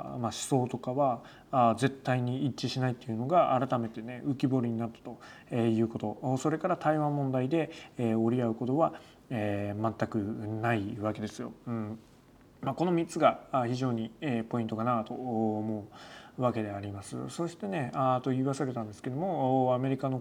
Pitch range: 120-150 Hz